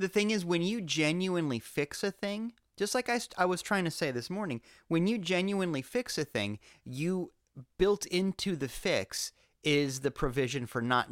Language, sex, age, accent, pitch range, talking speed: English, male, 30-49, American, 125-175 Hz, 190 wpm